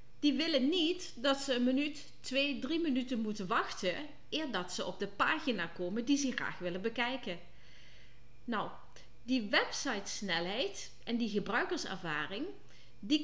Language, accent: Dutch, Dutch